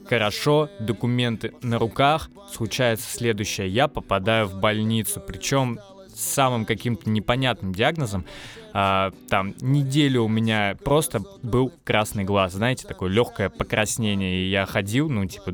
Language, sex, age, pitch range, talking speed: Russian, male, 20-39, 100-125 Hz, 125 wpm